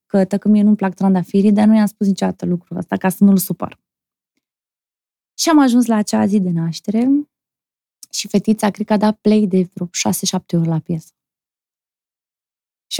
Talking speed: 180 wpm